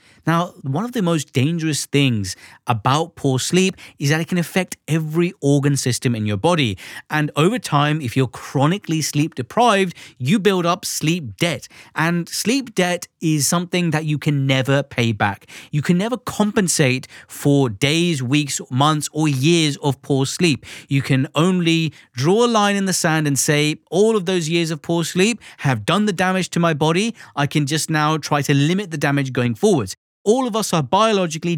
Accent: British